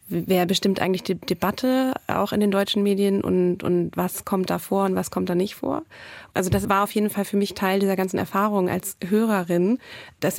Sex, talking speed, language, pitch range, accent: female, 215 wpm, German, 185-210 Hz, German